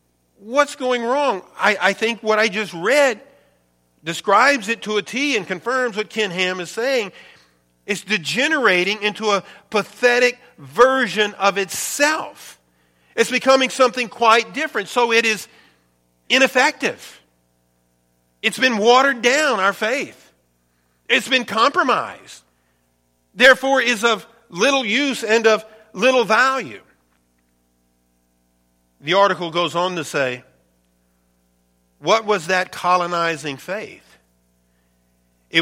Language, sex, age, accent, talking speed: English, male, 50-69, American, 115 wpm